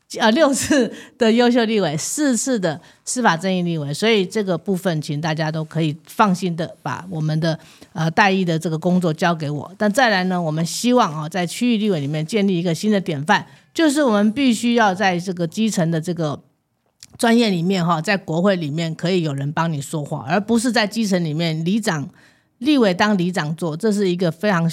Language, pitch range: Chinese, 165-215 Hz